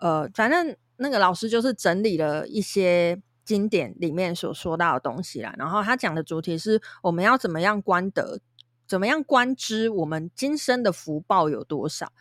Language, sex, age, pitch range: Chinese, female, 20-39, 170-220 Hz